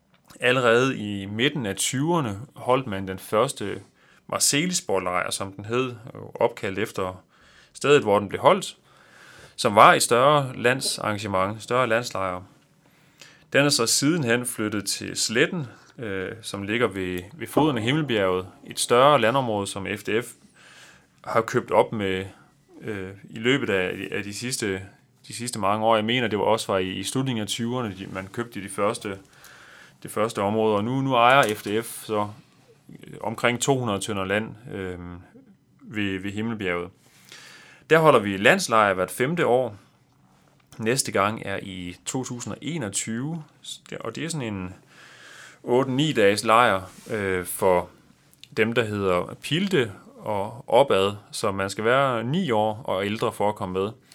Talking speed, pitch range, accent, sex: 150 wpm, 95-125 Hz, native, male